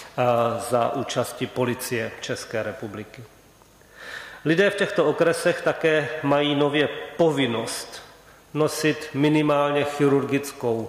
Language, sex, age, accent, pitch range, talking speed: Czech, male, 40-59, native, 125-145 Hz, 90 wpm